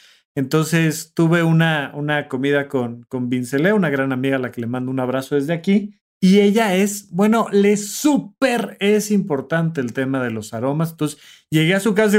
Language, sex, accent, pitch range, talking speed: Spanish, male, Mexican, 140-210 Hz, 185 wpm